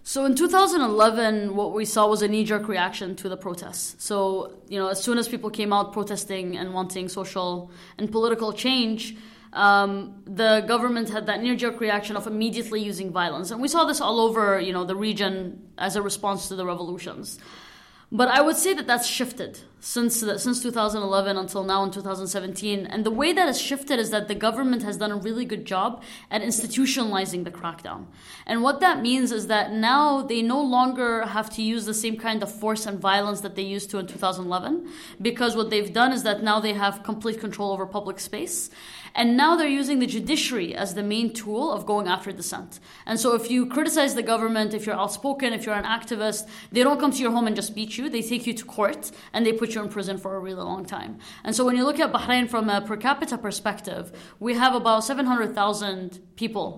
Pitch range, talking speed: 200-235 Hz, 210 wpm